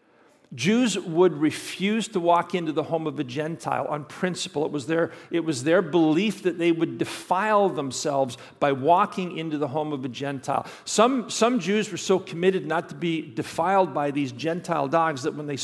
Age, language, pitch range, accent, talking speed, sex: 50-69, English, 150-190 Hz, American, 190 wpm, male